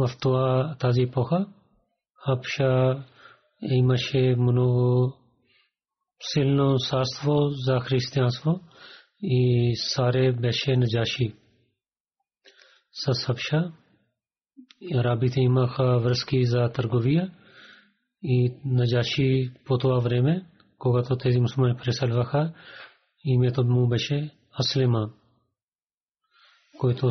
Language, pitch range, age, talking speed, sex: Bulgarian, 125-145 Hz, 30-49, 75 wpm, male